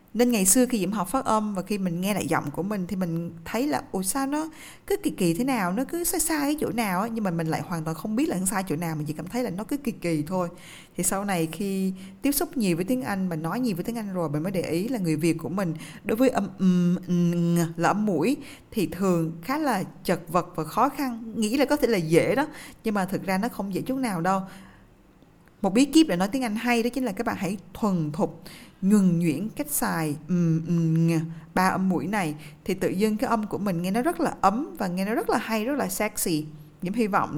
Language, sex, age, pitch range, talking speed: Vietnamese, female, 20-39, 170-235 Hz, 265 wpm